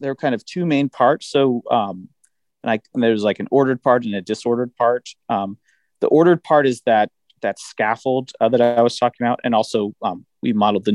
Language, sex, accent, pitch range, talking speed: English, male, American, 105-130 Hz, 220 wpm